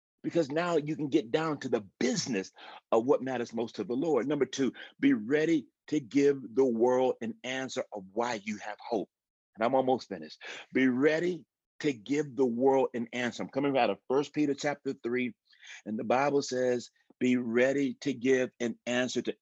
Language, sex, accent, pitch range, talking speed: English, male, American, 110-145 Hz, 190 wpm